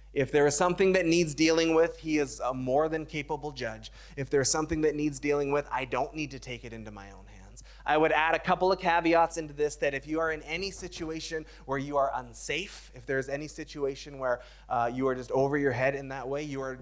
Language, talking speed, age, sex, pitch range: English, 245 wpm, 20-39, male, 125-160 Hz